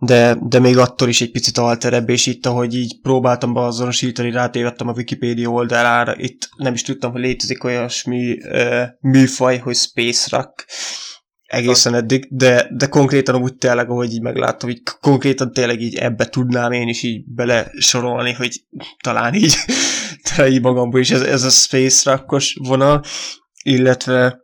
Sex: male